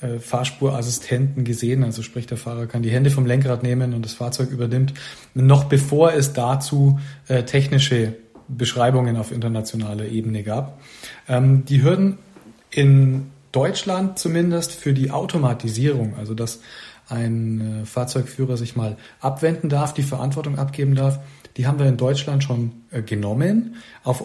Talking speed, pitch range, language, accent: 135 wpm, 120-140 Hz, German, German